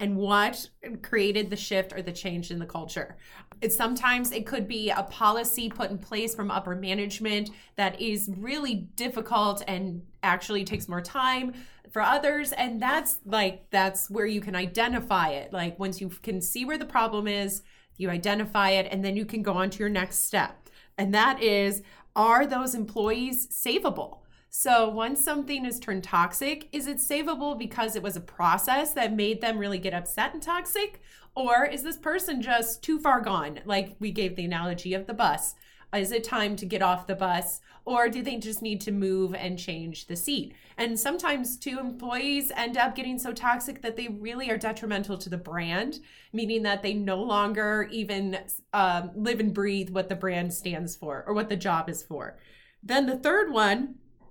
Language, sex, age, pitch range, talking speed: English, female, 20-39, 190-245 Hz, 190 wpm